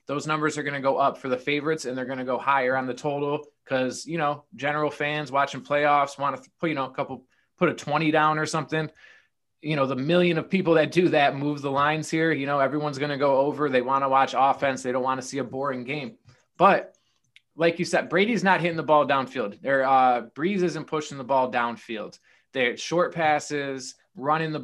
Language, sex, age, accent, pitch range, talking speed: English, male, 20-39, American, 135-170 Hz, 230 wpm